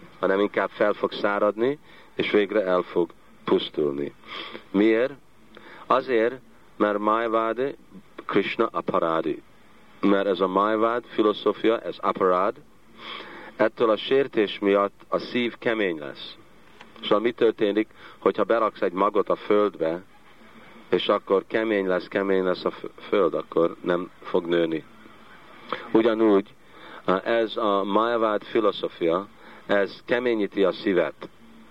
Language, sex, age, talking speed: Hungarian, male, 50-69, 115 wpm